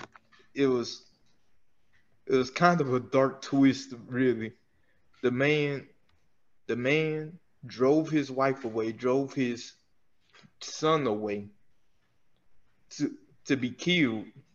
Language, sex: English, male